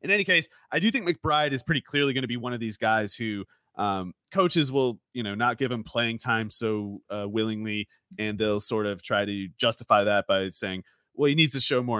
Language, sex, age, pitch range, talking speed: English, male, 30-49, 105-145 Hz, 235 wpm